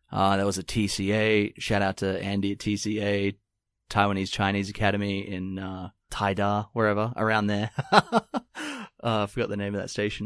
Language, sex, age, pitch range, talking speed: English, male, 30-49, 95-115 Hz, 165 wpm